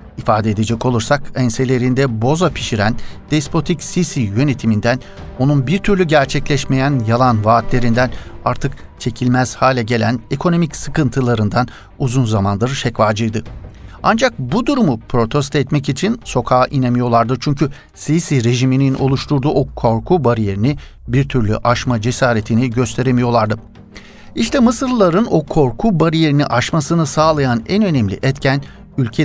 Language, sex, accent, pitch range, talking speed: Turkish, male, native, 115-150 Hz, 115 wpm